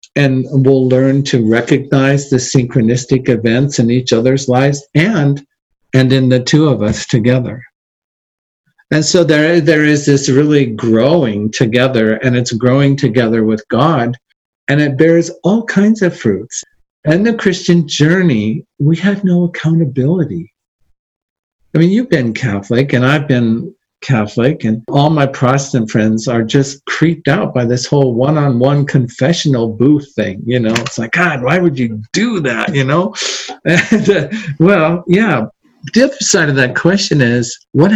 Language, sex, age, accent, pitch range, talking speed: English, male, 50-69, American, 125-170 Hz, 155 wpm